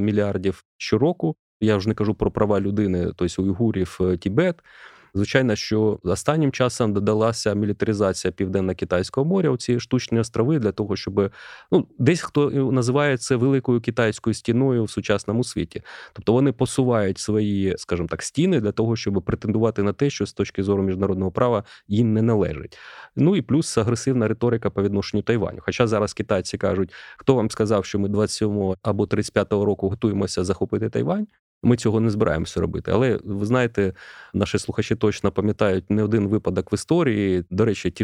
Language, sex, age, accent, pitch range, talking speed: Ukrainian, male, 30-49, native, 100-120 Hz, 165 wpm